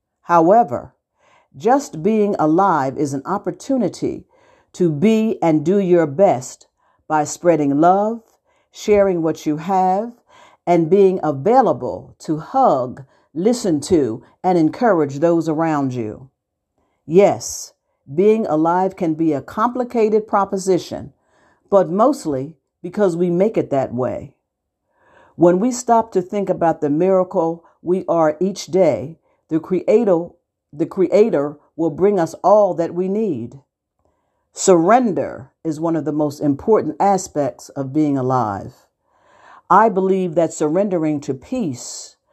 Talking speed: 125 wpm